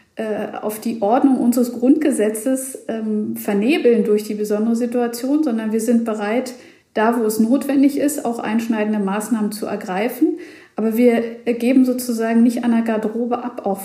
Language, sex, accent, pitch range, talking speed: German, female, German, 215-245 Hz, 150 wpm